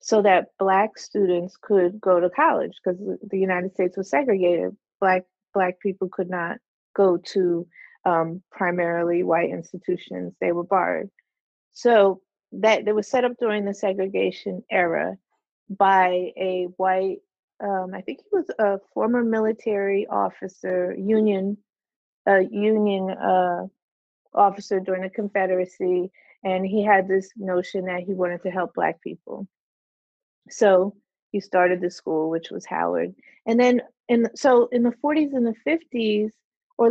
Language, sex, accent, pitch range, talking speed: English, female, American, 185-215 Hz, 145 wpm